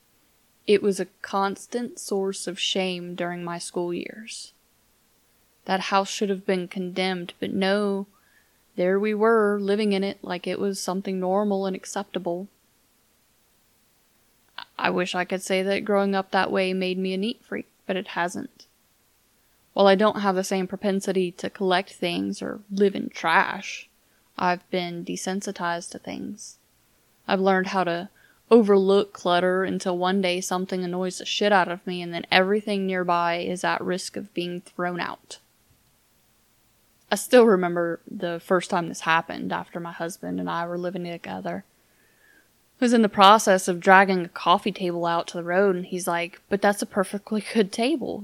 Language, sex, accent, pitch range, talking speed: English, female, American, 180-205 Hz, 170 wpm